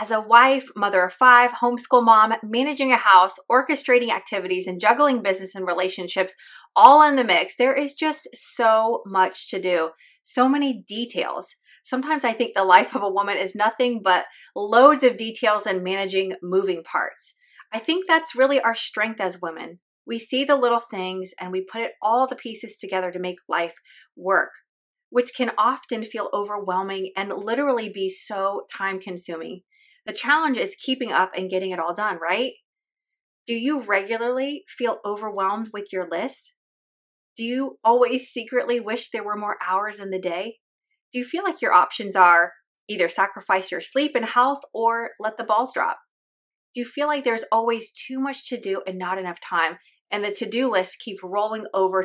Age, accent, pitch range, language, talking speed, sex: 30-49, American, 190-255 Hz, English, 180 wpm, female